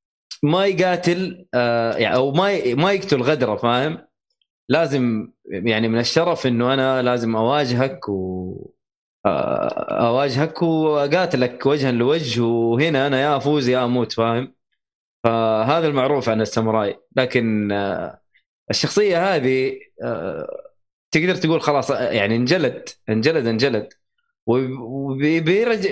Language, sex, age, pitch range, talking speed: Arabic, male, 20-39, 115-160 Hz, 95 wpm